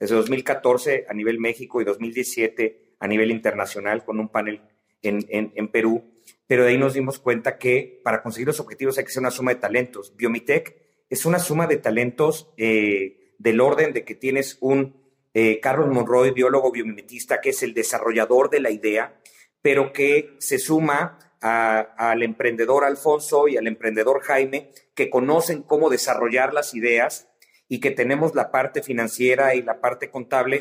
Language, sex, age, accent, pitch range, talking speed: English, male, 40-59, Mexican, 120-150 Hz, 170 wpm